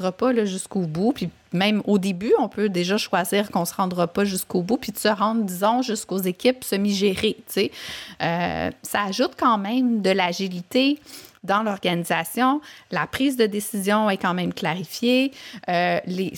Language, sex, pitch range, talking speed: English, female, 180-225 Hz, 170 wpm